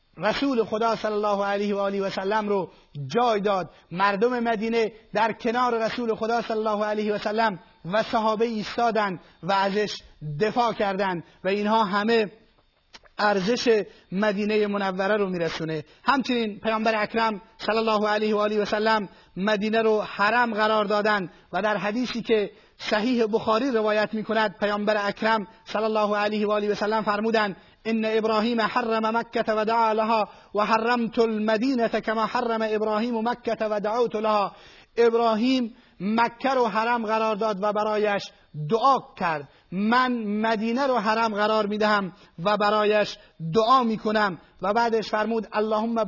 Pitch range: 205-225 Hz